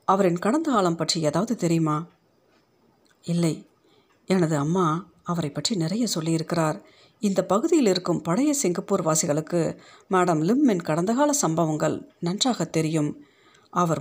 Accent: native